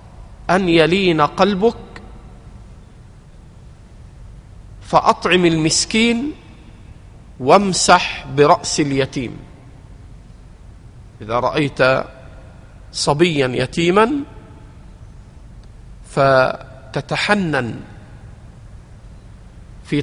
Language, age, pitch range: Arabic, 50-69, 115-165 Hz